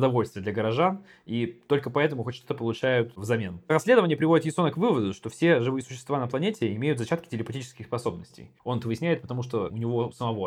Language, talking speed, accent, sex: Russian, 185 wpm, native, male